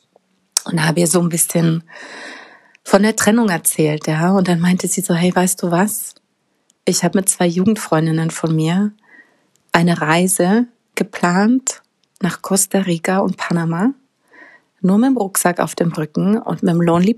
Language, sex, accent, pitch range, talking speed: German, female, German, 170-210 Hz, 160 wpm